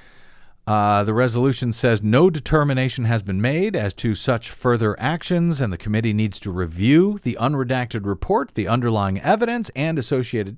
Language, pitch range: English, 110-155 Hz